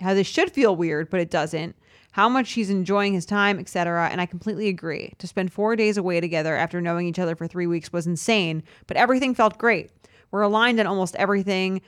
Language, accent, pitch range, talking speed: English, American, 170-215 Hz, 215 wpm